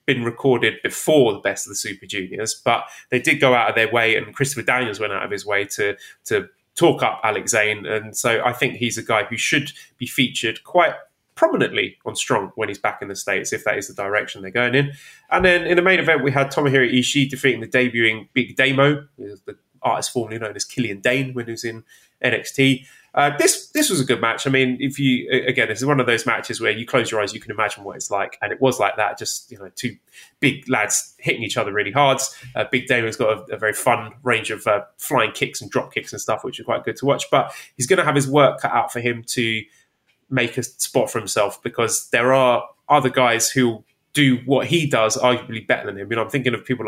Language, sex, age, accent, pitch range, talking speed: English, male, 20-39, British, 115-135 Hz, 250 wpm